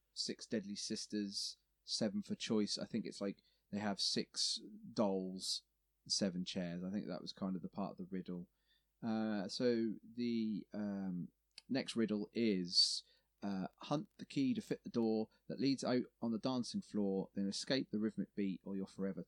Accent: British